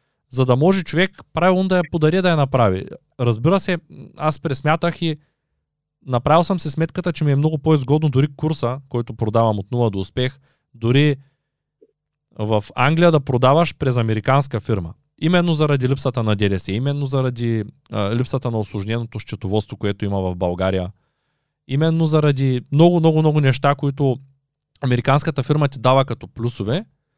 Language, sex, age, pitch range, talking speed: Bulgarian, male, 20-39, 125-165 Hz, 150 wpm